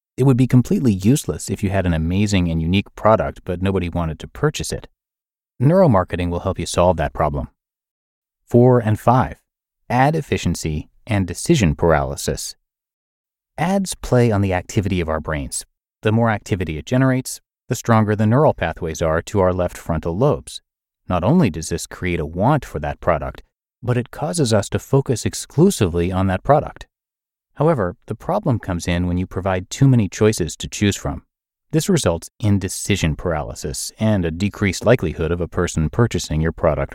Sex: male